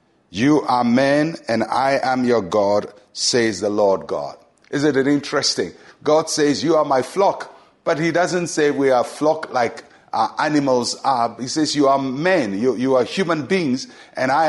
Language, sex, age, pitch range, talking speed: English, male, 60-79, 125-155 Hz, 185 wpm